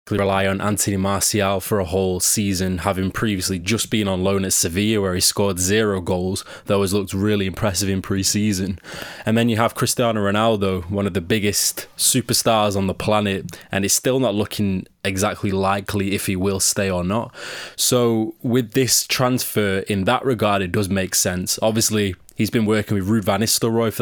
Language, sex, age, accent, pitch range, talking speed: English, male, 20-39, British, 95-110 Hz, 185 wpm